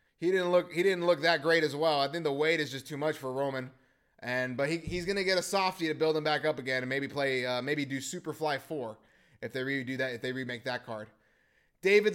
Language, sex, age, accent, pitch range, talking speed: English, male, 20-39, American, 150-185 Hz, 255 wpm